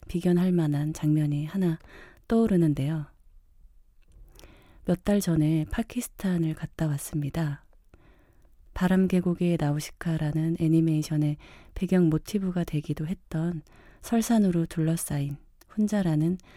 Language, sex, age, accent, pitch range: Korean, female, 30-49, native, 150-185 Hz